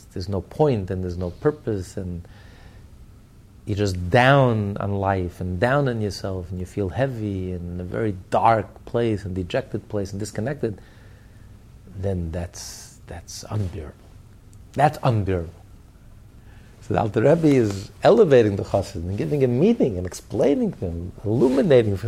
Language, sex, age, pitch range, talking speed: English, male, 50-69, 100-125 Hz, 150 wpm